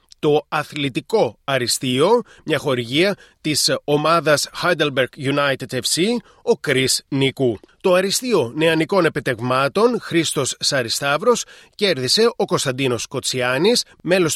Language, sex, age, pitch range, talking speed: Greek, male, 30-49, 130-175 Hz, 100 wpm